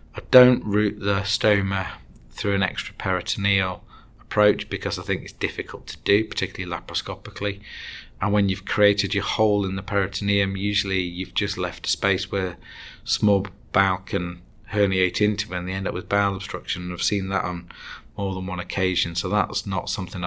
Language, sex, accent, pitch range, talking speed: English, male, British, 95-105 Hz, 180 wpm